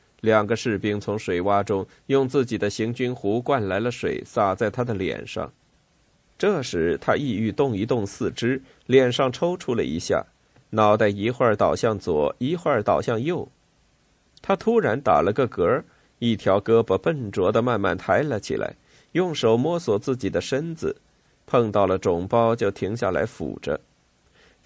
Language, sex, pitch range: Chinese, male, 105-135 Hz